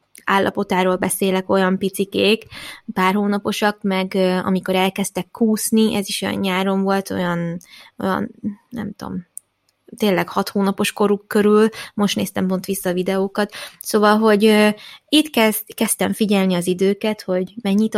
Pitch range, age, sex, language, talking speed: 190-220 Hz, 20-39, female, Hungarian, 135 wpm